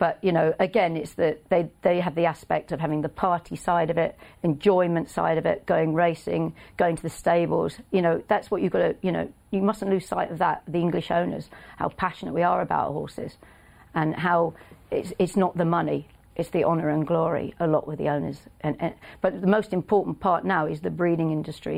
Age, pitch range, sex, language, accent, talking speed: 40-59, 160-180 Hz, female, English, British, 225 wpm